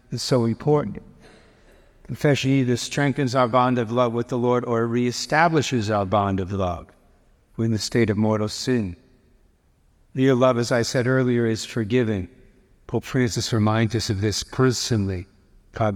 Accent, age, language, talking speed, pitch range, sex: American, 60-79, English, 155 wpm, 105-125 Hz, male